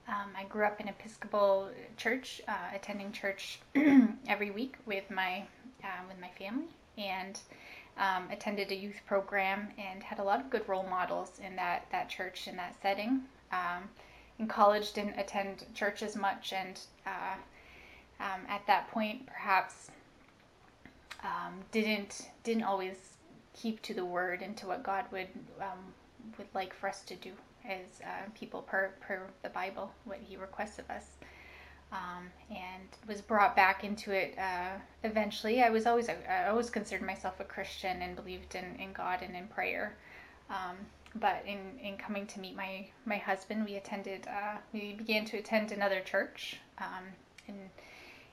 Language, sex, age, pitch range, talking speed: English, female, 10-29, 190-220 Hz, 165 wpm